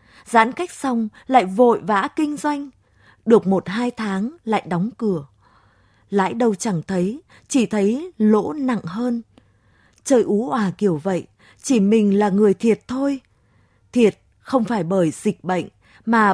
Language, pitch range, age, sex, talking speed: Vietnamese, 190-245 Hz, 20-39, female, 160 wpm